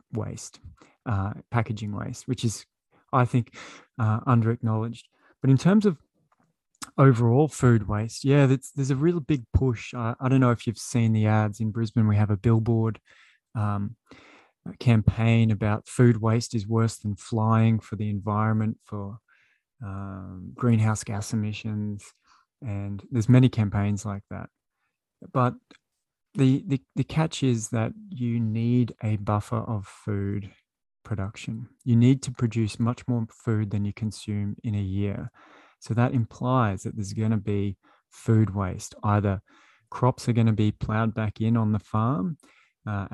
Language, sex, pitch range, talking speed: English, male, 105-120 Hz, 155 wpm